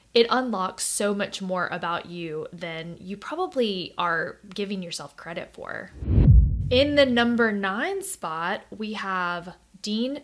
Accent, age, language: American, 10-29, English